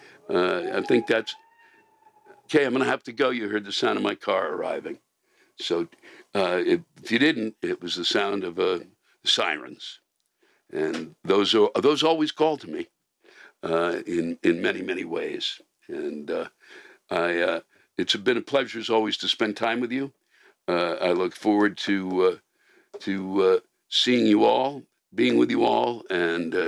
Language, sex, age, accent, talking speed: English, male, 60-79, American, 170 wpm